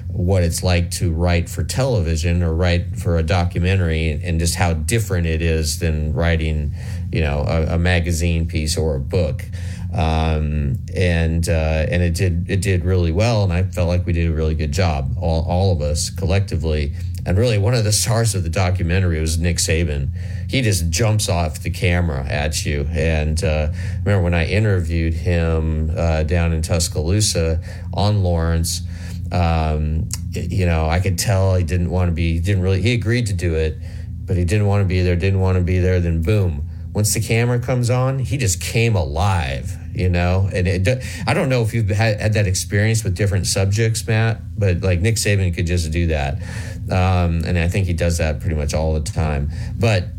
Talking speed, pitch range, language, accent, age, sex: 200 wpm, 85-100 Hz, English, American, 40-59, male